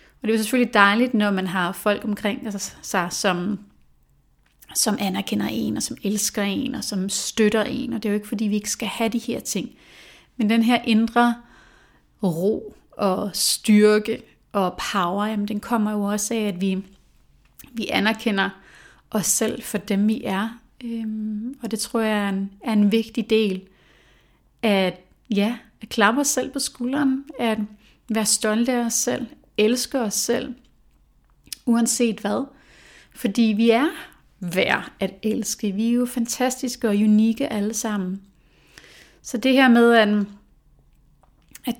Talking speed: 155 wpm